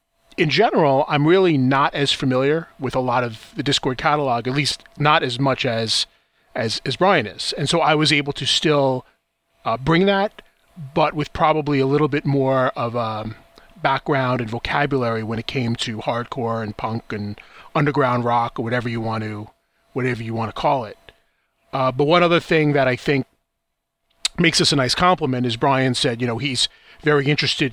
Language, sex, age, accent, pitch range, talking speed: English, male, 30-49, American, 120-150 Hz, 190 wpm